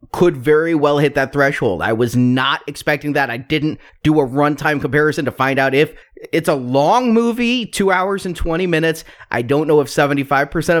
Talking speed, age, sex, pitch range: 195 wpm, 30-49, male, 130-165 Hz